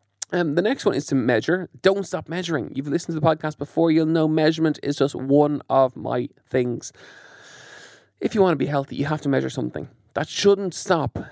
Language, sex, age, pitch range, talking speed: English, male, 20-39, 125-165 Hz, 205 wpm